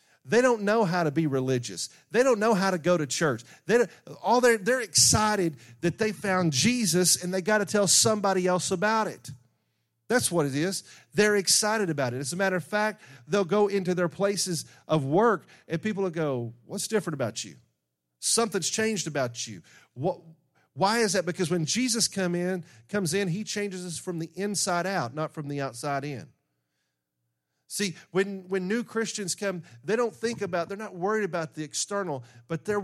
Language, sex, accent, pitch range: English, male, American, 140-195 Hz